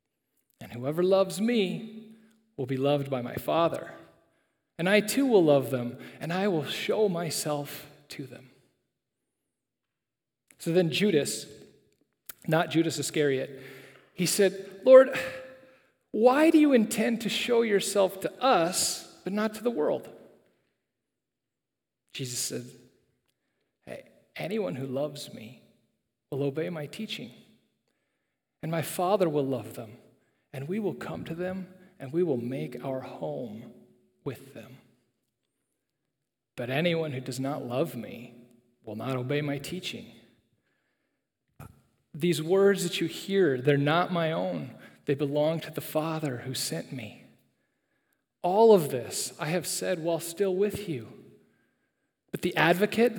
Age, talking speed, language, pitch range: 40-59, 135 wpm, English, 135-195 Hz